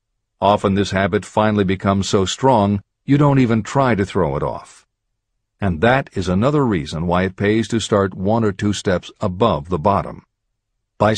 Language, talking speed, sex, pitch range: English, 175 wpm, male, 100-120 Hz